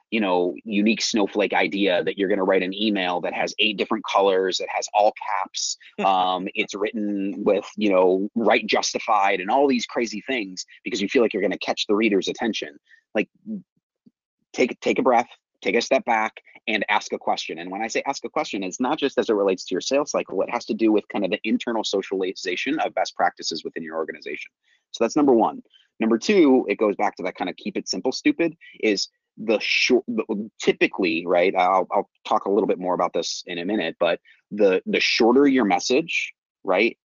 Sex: male